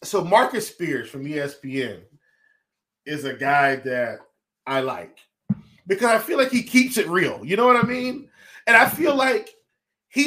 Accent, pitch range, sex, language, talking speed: American, 170-235 Hz, male, English, 170 wpm